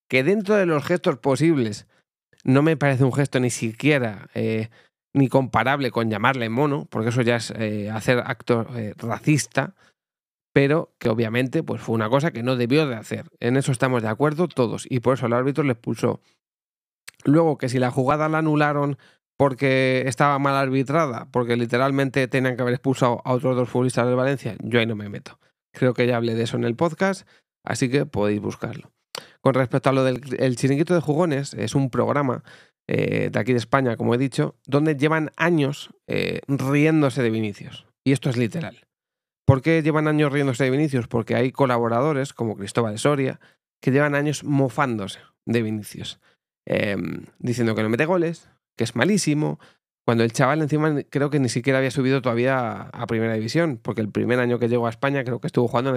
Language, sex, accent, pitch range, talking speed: Spanish, male, Spanish, 120-145 Hz, 195 wpm